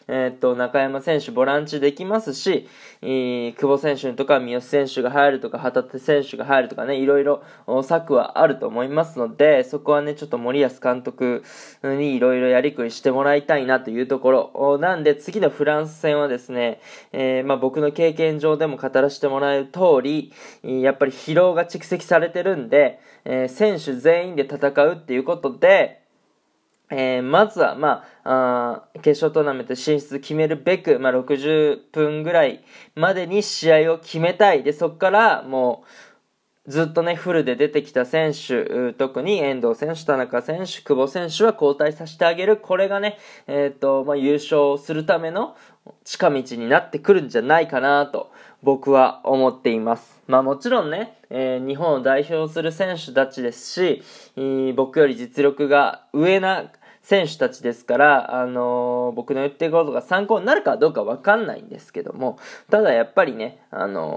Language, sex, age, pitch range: Japanese, male, 20-39, 130-165 Hz